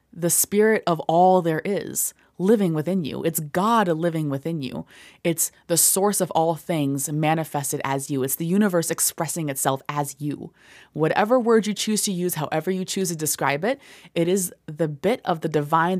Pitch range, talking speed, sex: 150-205 Hz, 185 wpm, female